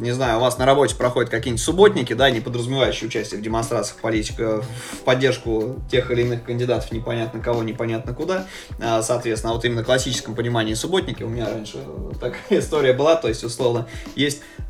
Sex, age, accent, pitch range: male, 20-39, native, 110-135 Hz